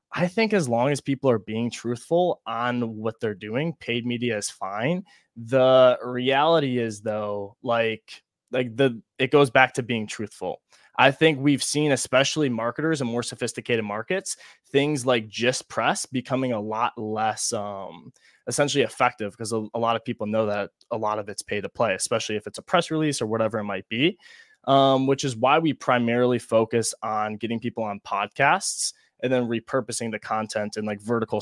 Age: 20-39